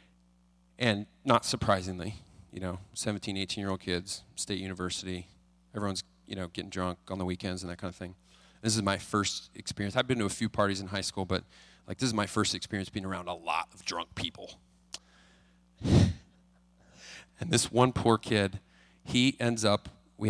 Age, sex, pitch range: 30-49, male, 90-110 Hz